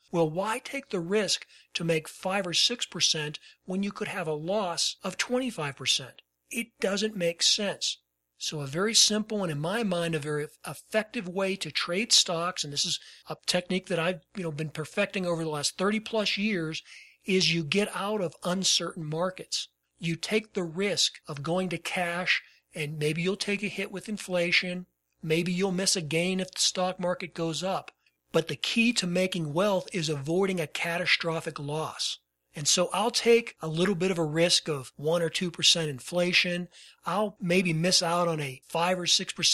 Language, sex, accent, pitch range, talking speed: English, male, American, 160-190 Hz, 185 wpm